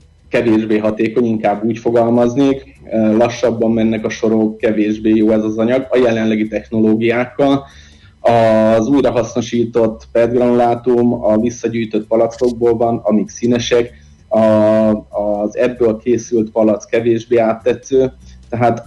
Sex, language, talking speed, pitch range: male, Hungarian, 105 wpm, 105-120 Hz